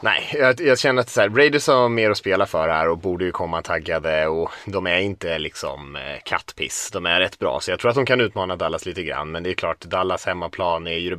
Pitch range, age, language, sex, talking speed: 90-130 Hz, 30-49, Swedish, male, 255 wpm